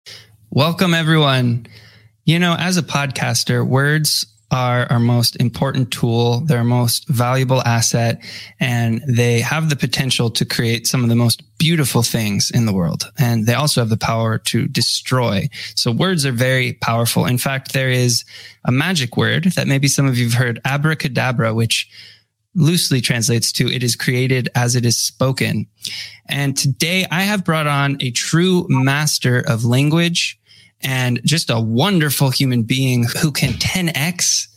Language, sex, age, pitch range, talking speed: English, male, 20-39, 120-150 Hz, 160 wpm